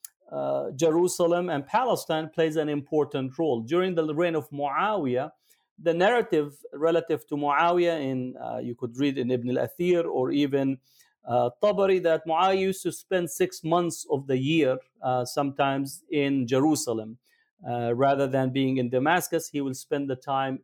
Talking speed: 155 wpm